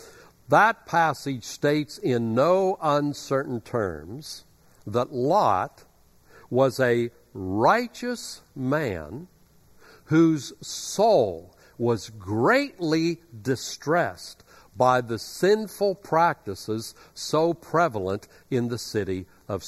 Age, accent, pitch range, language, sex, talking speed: 60-79, American, 115-165 Hz, English, male, 85 wpm